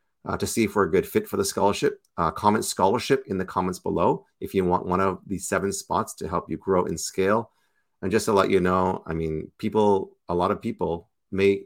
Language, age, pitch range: English, 30-49, 90-110 Hz